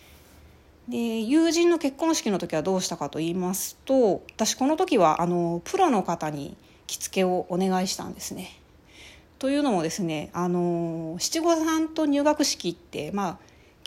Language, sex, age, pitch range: Japanese, female, 30-49, 170-245 Hz